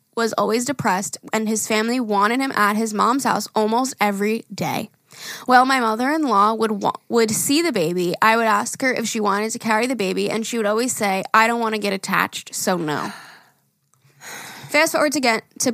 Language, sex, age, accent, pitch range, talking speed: English, female, 10-29, American, 205-255 Hz, 200 wpm